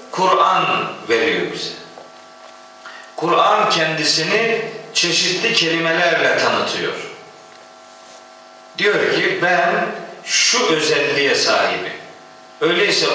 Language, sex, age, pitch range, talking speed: Turkish, male, 50-69, 165-230 Hz, 70 wpm